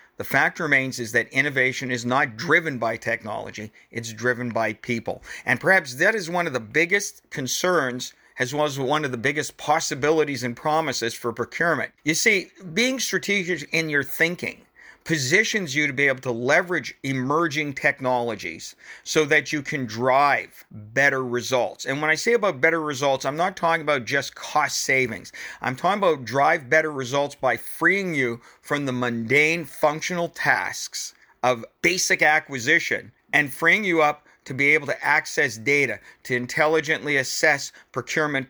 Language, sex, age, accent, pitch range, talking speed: English, male, 50-69, American, 125-155 Hz, 160 wpm